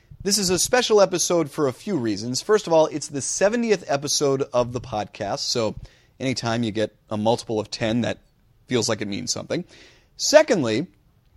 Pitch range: 110-150 Hz